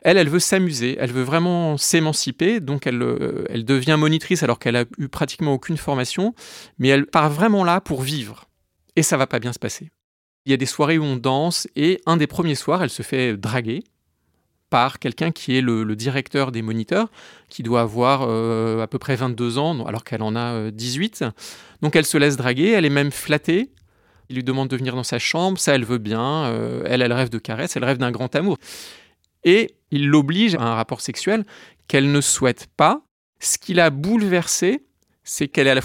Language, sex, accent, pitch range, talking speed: French, male, French, 125-175 Hz, 215 wpm